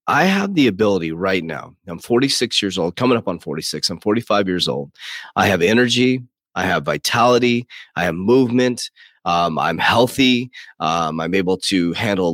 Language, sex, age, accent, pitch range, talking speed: English, male, 30-49, American, 95-125 Hz, 170 wpm